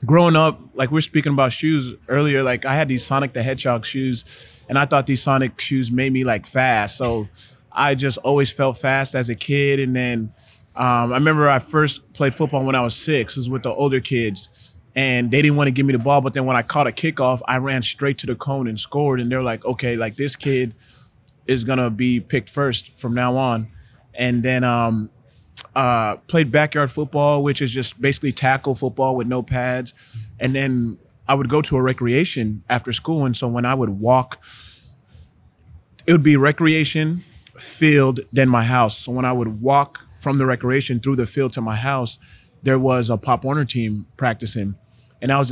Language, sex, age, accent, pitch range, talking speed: English, male, 20-39, American, 120-140 Hz, 210 wpm